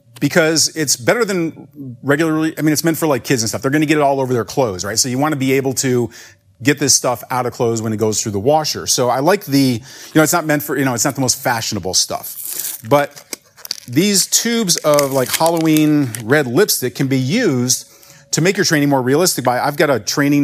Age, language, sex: 40-59, English, male